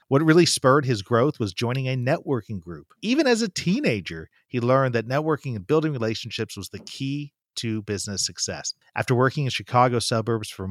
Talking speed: 185 wpm